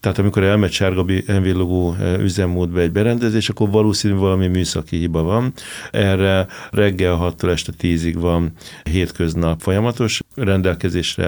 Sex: male